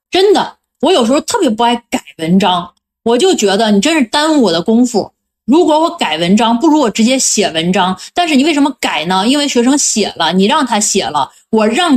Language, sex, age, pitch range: Chinese, female, 20-39, 210-290 Hz